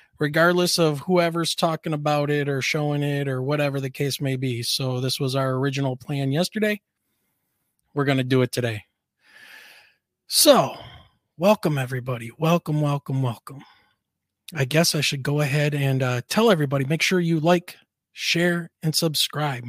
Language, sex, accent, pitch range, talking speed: English, male, American, 135-160 Hz, 150 wpm